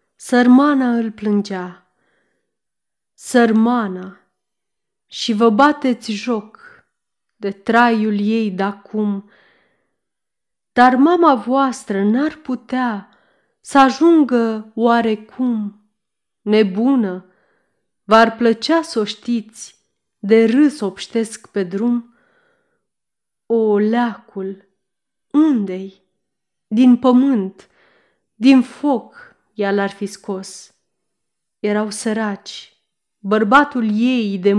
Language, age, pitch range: Romanian, 30-49, 205-255 Hz